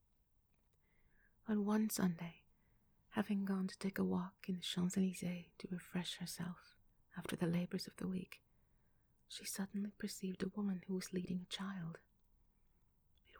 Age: 30-49